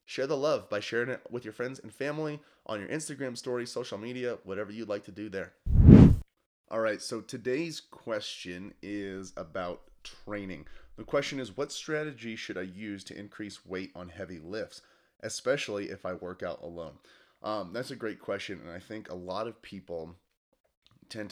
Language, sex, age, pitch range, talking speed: English, male, 30-49, 90-110 Hz, 180 wpm